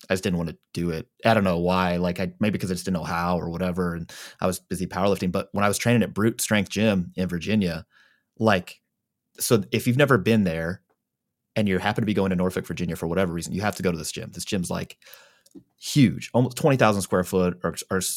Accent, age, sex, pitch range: American, 20-39, male, 90-120 Hz